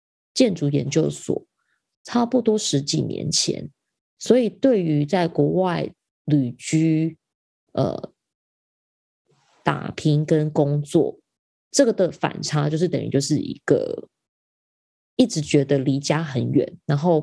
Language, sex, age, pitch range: Chinese, female, 20-39, 145-200 Hz